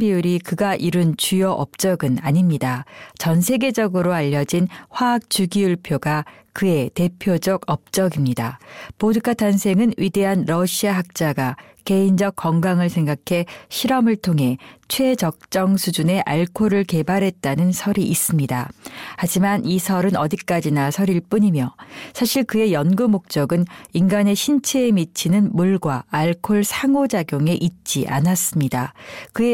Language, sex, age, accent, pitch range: Korean, female, 40-59, native, 165-205 Hz